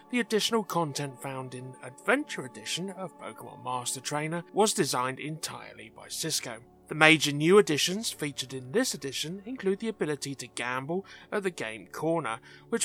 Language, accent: English, British